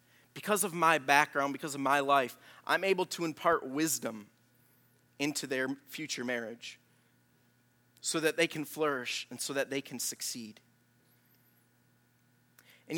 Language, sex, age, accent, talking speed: English, male, 30-49, American, 135 wpm